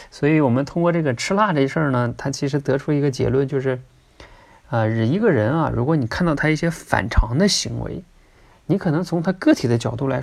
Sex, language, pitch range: male, Chinese, 120-170 Hz